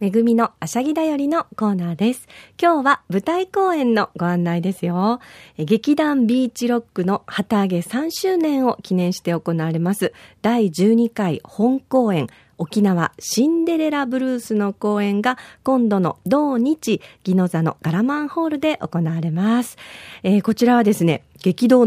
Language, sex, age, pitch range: Japanese, female, 40-59, 185-285 Hz